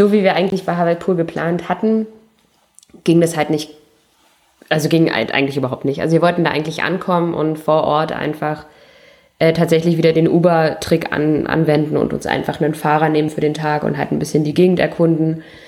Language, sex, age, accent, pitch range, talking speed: German, female, 20-39, German, 155-175 Hz, 195 wpm